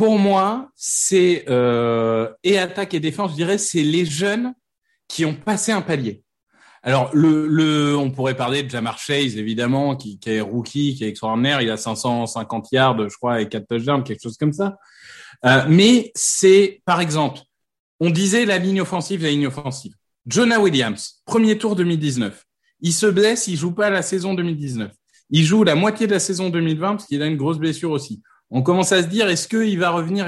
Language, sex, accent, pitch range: French, male, French, 130-195 Hz